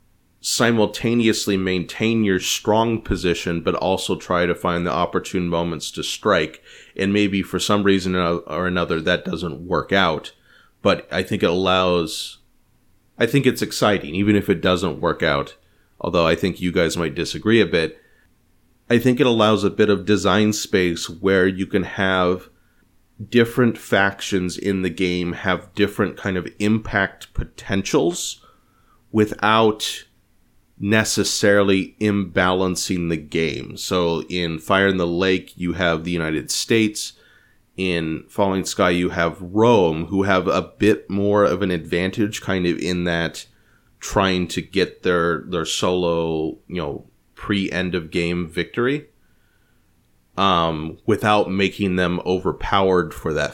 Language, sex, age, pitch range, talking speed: English, male, 30-49, 85-105 Hz, 145 wpm